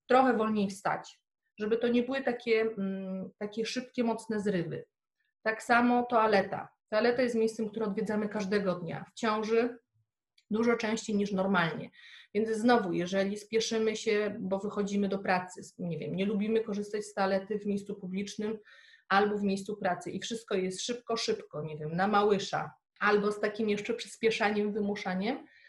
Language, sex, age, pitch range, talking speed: English, female, 30-49, 200-235 Hz, 145 wpm